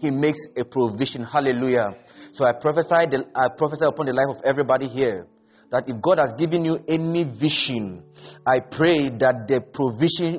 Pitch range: 135-190 Hz